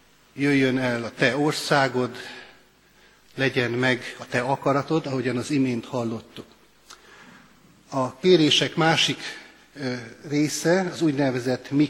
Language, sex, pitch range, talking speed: Hungarian, male, 125-150 Hz, 105 wpm